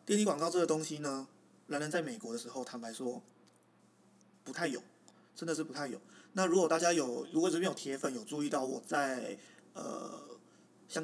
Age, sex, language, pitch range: 20-39, male, Chinese, 135-165 Hz